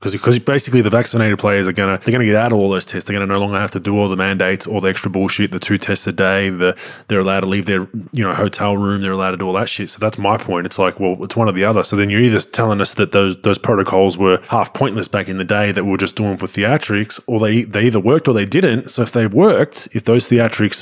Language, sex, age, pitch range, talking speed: English, male, 20-39, 95-110 Hz, 300 wpm